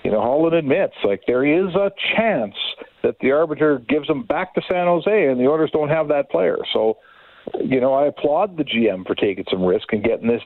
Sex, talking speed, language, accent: male, 225 wpm, English, American